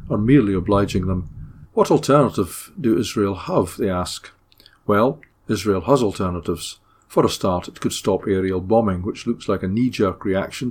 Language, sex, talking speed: English, male, 165 wpm